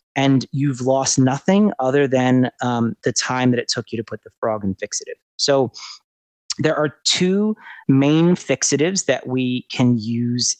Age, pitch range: 30-49, 120-145 Hz